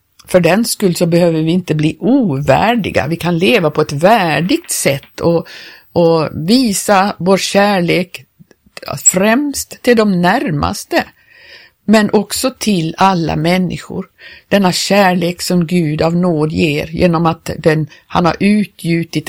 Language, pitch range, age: Swedish, 165-210 Hz, 50-69